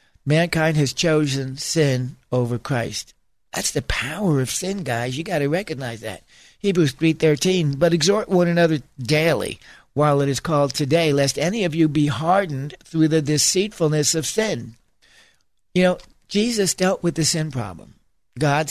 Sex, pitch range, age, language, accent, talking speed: male, 135-170 Hz, 60-79, English, American, 155 wpm